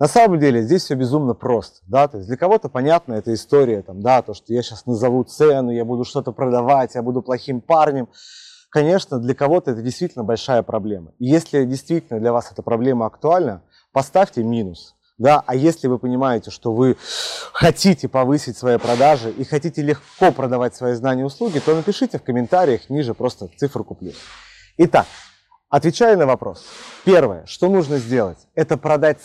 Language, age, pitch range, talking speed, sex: Russian, 30-49, 120-155 Hz, 155 wpm, male